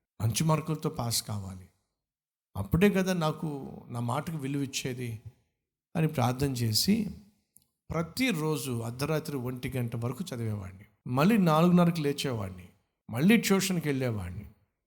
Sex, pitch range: male, 105-155 Hz